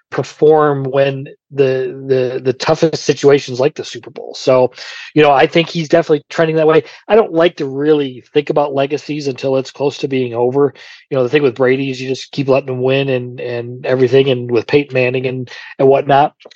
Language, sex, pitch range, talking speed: English, male, 130-155 Hz, 210 wpm